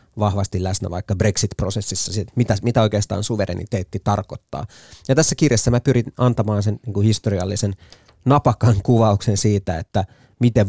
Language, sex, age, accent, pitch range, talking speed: Finnish, male, 30-49, native, 100-115 Hz, 120 wpm